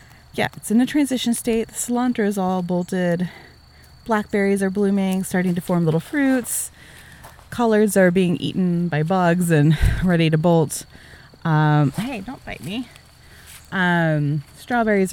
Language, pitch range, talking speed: English, 145-190 Hz, 145 wpm